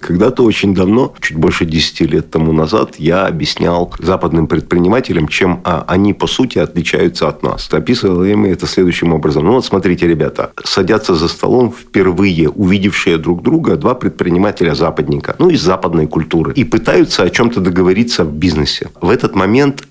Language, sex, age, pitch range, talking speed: Russian, male, 50-69, 85-105 Hz, 165 wpm